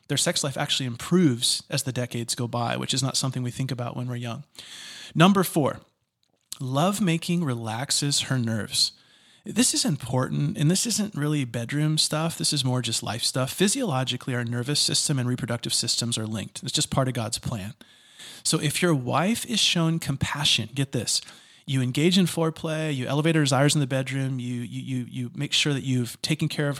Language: English